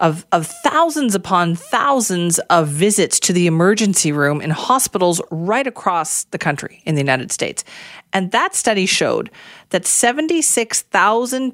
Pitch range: 155-215 Hz